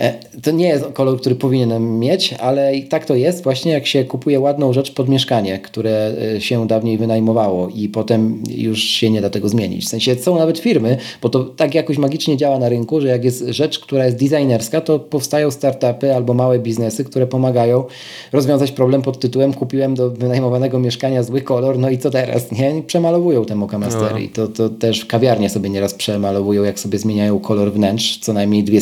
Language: Polish